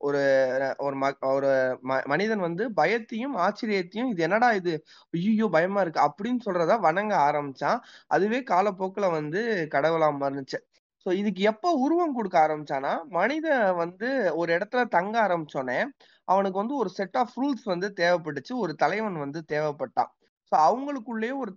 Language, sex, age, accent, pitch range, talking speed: Tamil, male, 20-39, native, 155-220 Hz, 140 wpm